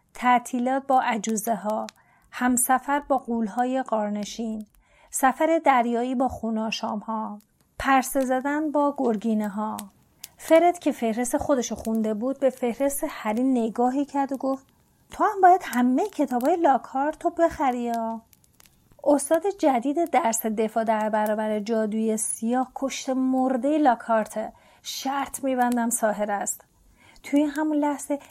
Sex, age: female, 30-49